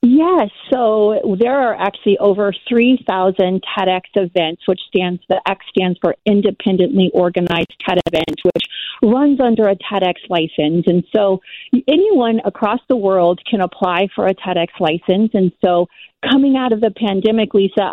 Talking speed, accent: 150 wpm, American